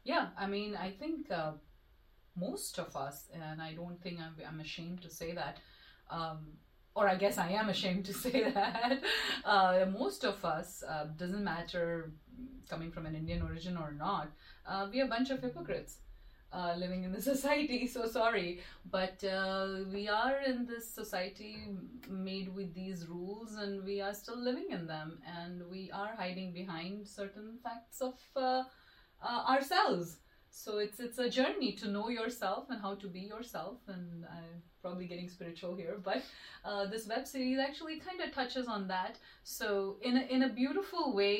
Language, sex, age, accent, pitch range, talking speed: English, female, 30-49, Indian, 180-225 Hz, 180 wpm